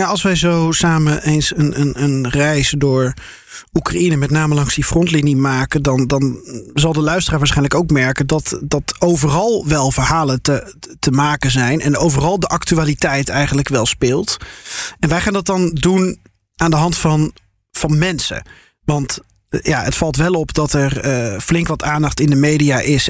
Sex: male